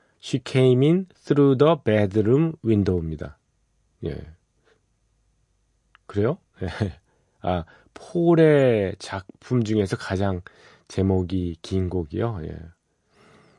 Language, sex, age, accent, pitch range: Korean, male, 40-59, native, 95-125 Hz